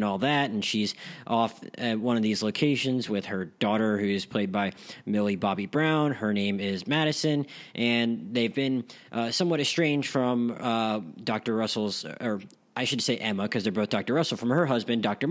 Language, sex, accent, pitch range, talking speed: English, male, American, 105-130 Hz, 185 wpm